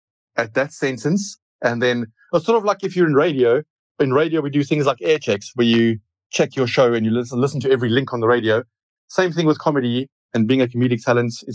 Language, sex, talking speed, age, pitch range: English, male, 240 wpm, 30-49, 120-160 Hz